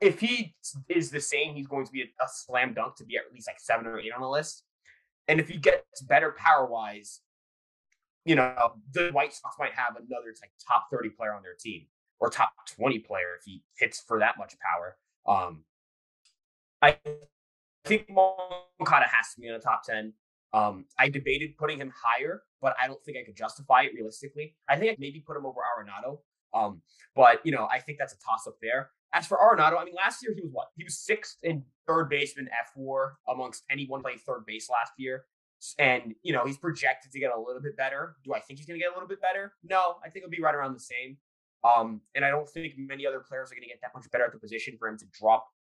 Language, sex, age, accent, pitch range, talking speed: English, male, 20-39, American, 115-165 Hz, 235 wpm